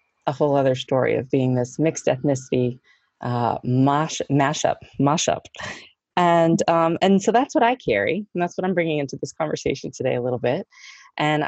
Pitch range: 125-175 Hz